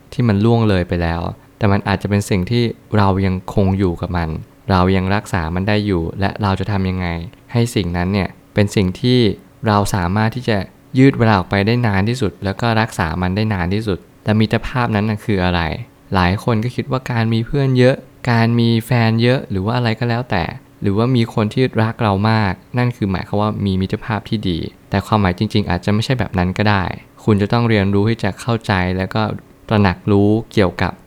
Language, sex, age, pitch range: Thai, male, 20-39, 95-115 Hz